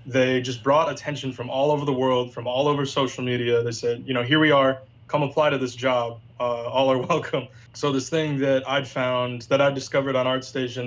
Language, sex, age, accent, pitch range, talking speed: English, male, 20-39, American, 120-135 Hz, 225 wpm